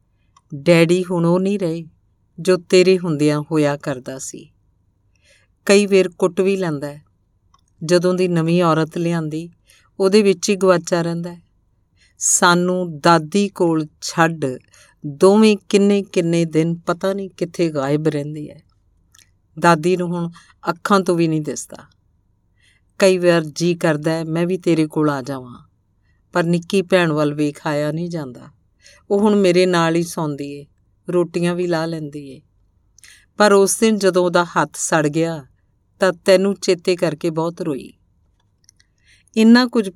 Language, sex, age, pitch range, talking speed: Punjabi, female, 50-69, 135-180 Hz, 130 wpm